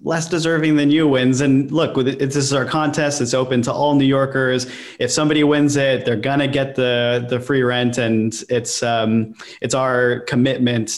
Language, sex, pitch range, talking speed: English, male, 115-135 Hz, 190 wpm